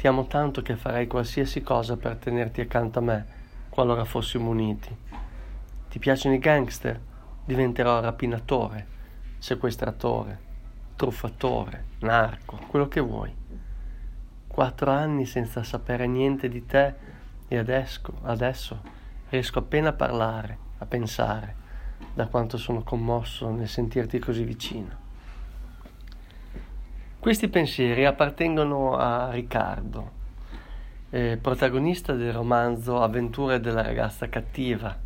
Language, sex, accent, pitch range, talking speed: Italian, male, native, 110-130 Hz, 110 wpm